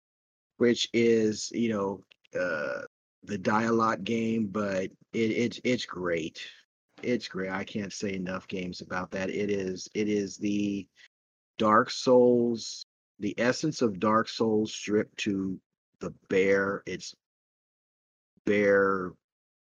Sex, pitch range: male, 90-105 Hz